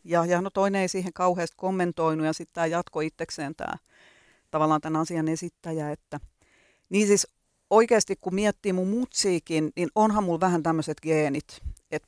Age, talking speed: 40-59, 165 wpm